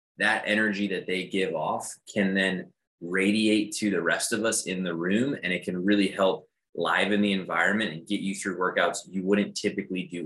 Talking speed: 200 wpm